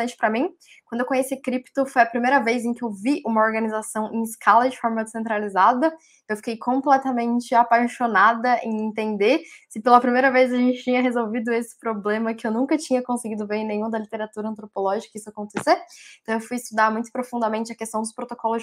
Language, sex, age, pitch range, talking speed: Portuguese, female, 10-29, 215-255 Hz, 195 wpm